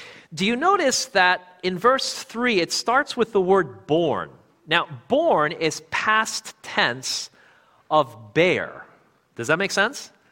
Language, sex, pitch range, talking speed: English, male, 165-235 Hz, 140 wpm